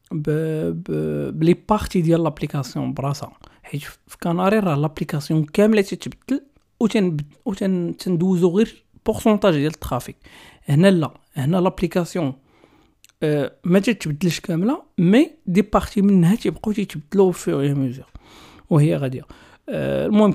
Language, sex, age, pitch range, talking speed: Arabic, male, 40-59, 150-195 Hz, 110 wpm